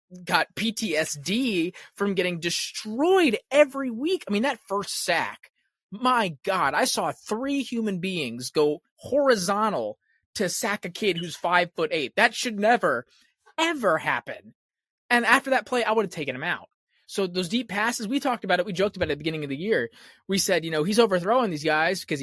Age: 20-39